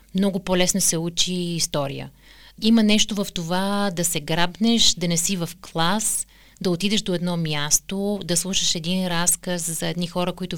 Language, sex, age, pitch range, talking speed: Bulgarian, female, 30-49, 170-190 Hz, 170 wpm